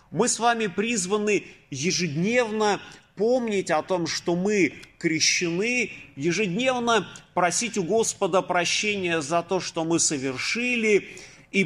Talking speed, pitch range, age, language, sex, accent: 115 wpm, 150-210 Hz, 30-49, Russian, male, native